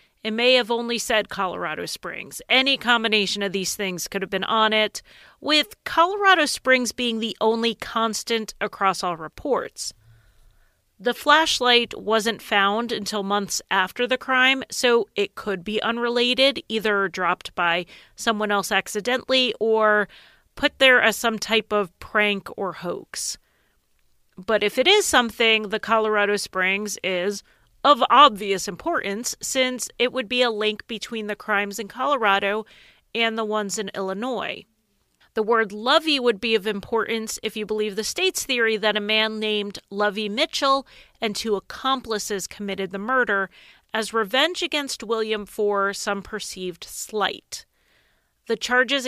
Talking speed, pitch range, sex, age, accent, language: 145 wpm, 200-245 Hz, female, 30-49, American, English